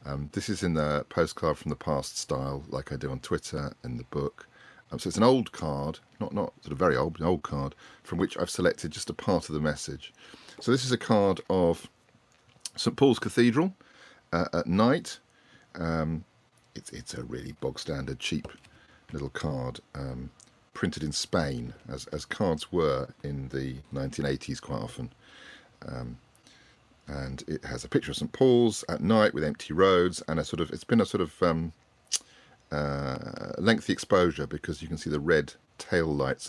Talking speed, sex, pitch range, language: 185 wpm, male, 70-95 Hz, English